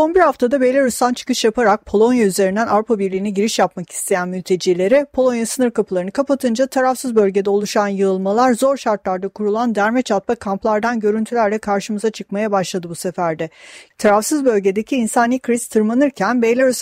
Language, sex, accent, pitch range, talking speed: Turkish, female, native, 205-255 Hz, 145 wpm